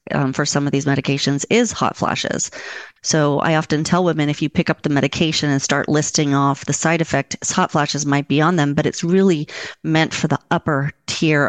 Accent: American